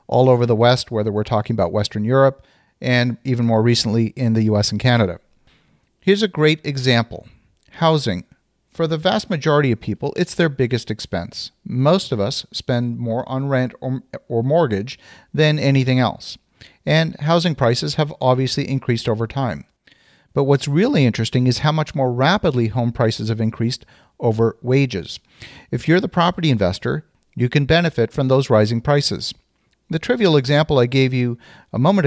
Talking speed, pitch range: 170 wpm, 115-150 Hz